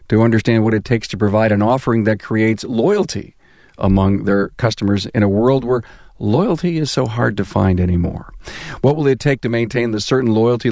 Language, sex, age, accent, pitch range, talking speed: English, male, 50-69, American, 110-130 Hz, 195 wpm